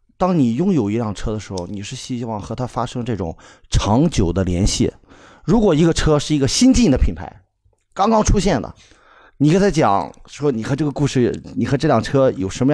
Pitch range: 115-155 Hz